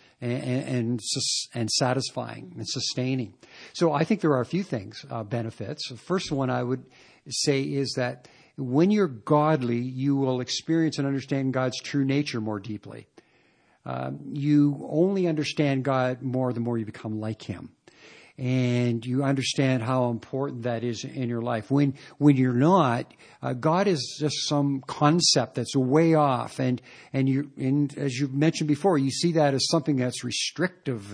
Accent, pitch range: American, 120-145 Hz